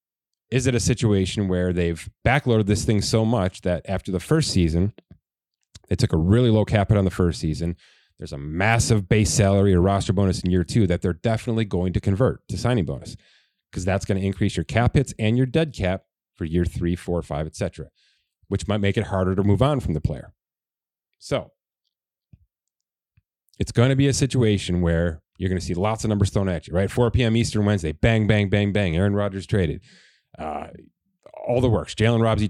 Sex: male